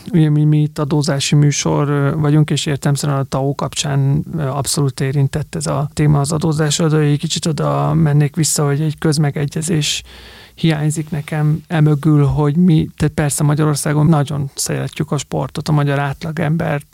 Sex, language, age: male, Hungarian, 30-49